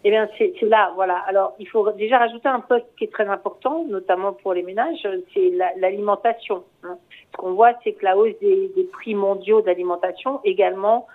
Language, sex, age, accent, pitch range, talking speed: French, female, 50-69, French, 210-260 Hz, 200 wpm